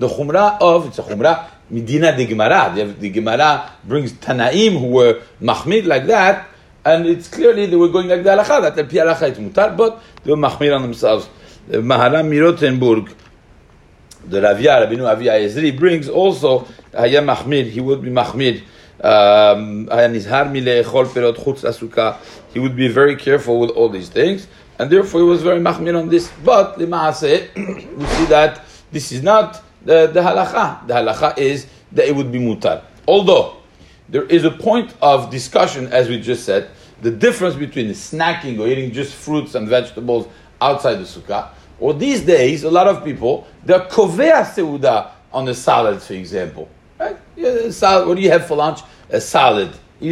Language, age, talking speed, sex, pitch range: English, 60-79, 185 wpm, male, 125-180 Hz